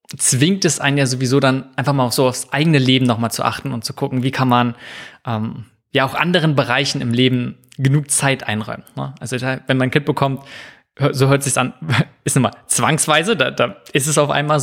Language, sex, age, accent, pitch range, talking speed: German, male, 20-39, German, 125-145 Hz, 220 wpm